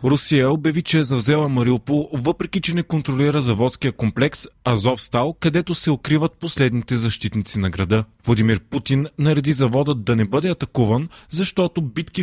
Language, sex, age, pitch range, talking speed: Bulgarian, male, 30-49, 115-145 Hz, 150 wpm